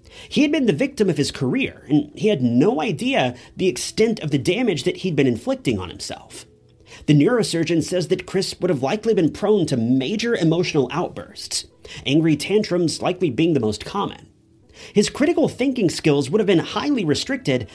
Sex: male